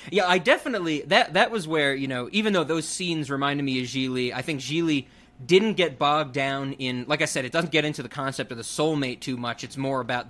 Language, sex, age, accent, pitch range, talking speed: English, male, 20-39, American, 140-180 Hz, 245 wpm